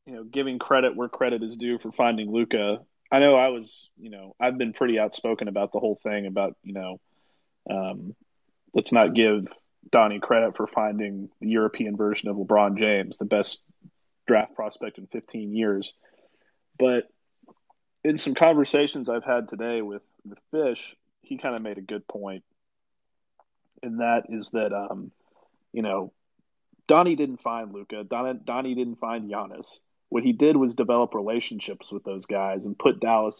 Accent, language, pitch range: American, English, 105-125 Hz